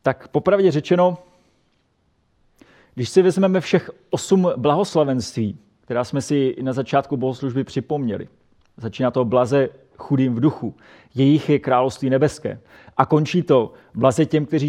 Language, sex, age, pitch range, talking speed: Czech, male, 30-49, 120-145 Hz, 130 wpm